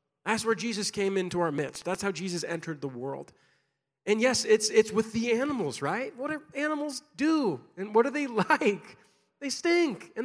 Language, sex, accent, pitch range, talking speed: English, male, American, 155-220 Hz, 195 wpm